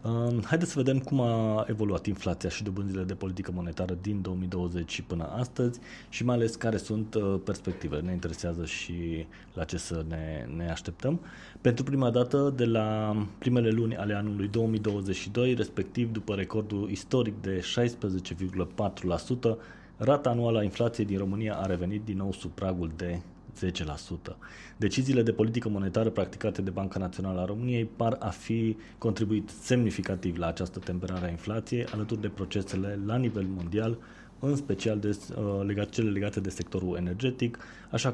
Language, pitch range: Romanian, 95-115 Hz